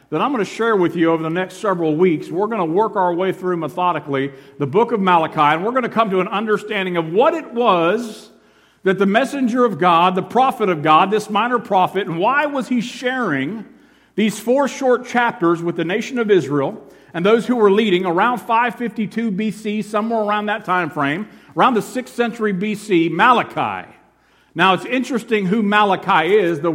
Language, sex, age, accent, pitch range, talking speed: English, male, 50-69, American, 165-225 Hz, 195 wpm